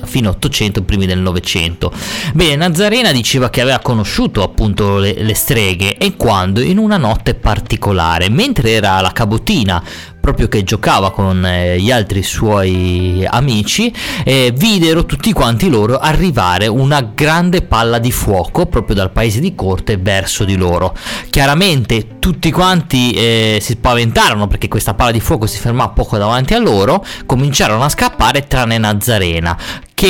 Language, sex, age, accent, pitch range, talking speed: Italian, male, 30-49, native, 105-140 Hz, 150 wpm